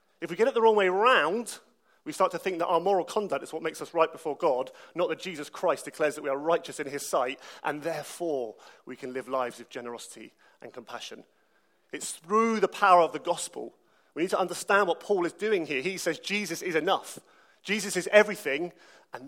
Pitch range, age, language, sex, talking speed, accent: 150-190 Hz, 30-49, English, male, 220 wpm, British